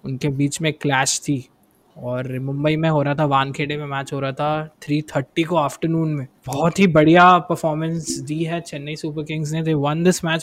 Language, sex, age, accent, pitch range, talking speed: Hindi, male, 20-39, native, 145-175 Hz, 190 wpm